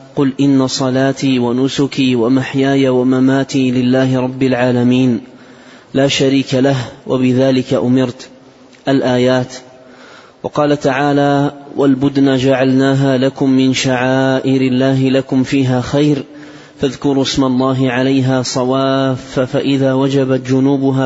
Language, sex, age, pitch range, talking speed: Arabic, male, 20-39, 130-140 Hz, 95 wpm